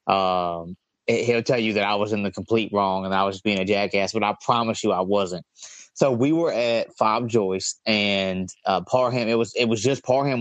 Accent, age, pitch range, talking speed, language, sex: American, 20-39, 100-120 Hz, 230 wpm, English, male